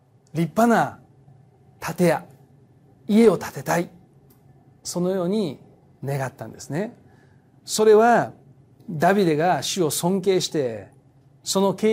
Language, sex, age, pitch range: Japanese, male, 40-59, 135-185 Hz